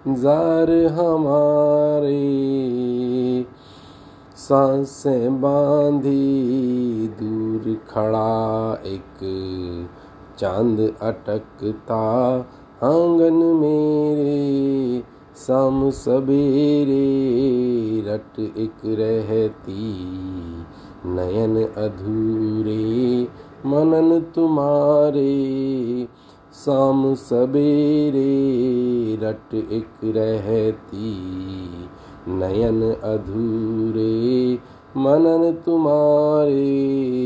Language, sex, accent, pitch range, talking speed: Hindi, male, native, 110-140 Hz, 45 wpm